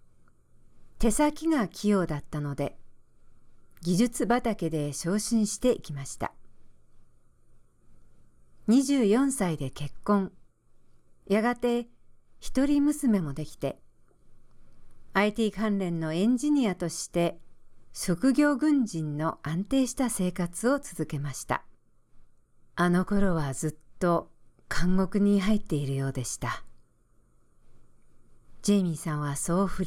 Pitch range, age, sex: 155-220 Hz, 50-69, female